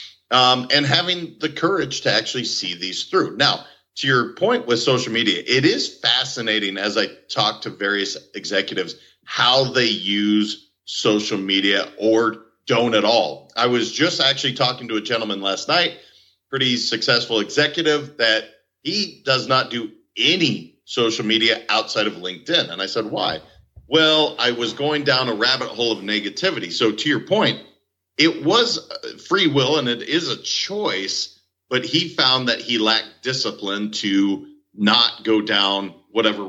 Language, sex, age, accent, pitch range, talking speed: English, male, 40-59, American, 100-130 Hz, 160 wpm